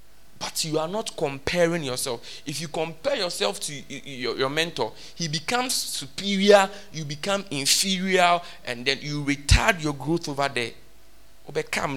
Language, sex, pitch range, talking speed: English, male, 135-190 Hz, 135 wpm